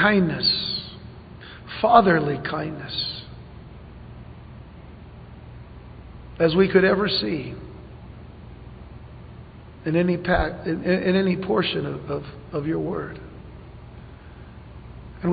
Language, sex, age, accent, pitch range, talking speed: English, male, 50-69, American, 160-190 Hz, 80 wpm